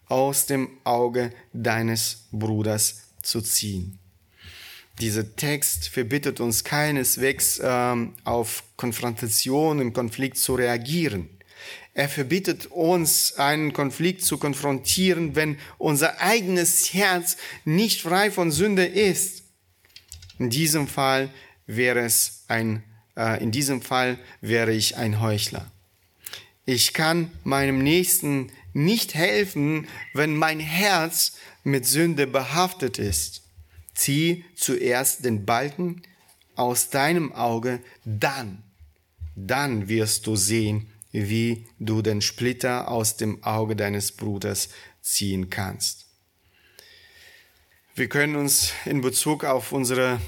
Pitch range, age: 110-150 Hz, 30-49